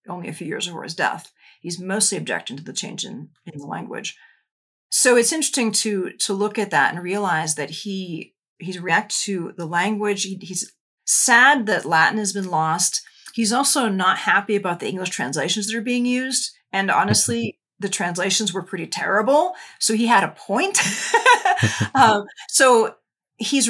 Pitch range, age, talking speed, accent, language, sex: 175-225 Hz, 40-59, 175 wpm, American, English, female